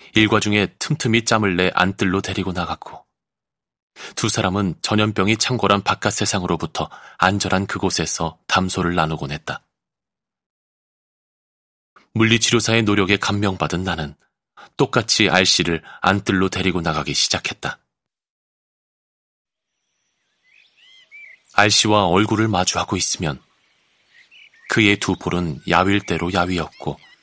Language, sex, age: Korean, male, 30-49